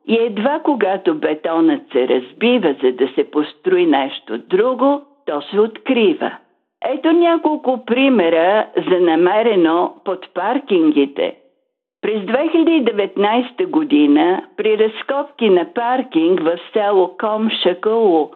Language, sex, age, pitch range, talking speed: Bulgarian, female, 50-69, 190-300 Hz, 110 wpm